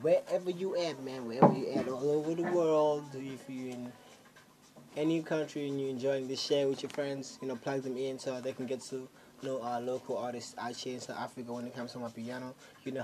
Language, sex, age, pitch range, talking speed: English, male, 20-39, 115-140 Hz, 240 wpm